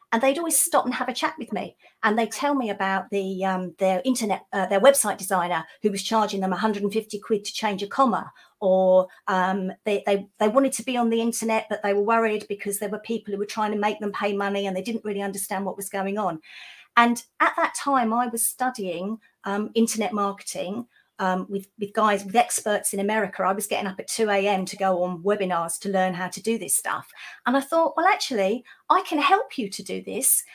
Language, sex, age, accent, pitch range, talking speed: English, female, 40-59, British, 200-240 Hz, 230 wpm